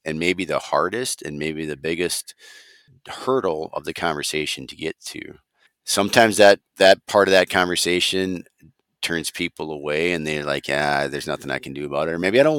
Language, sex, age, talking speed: English, male, 40-59, 190 wpm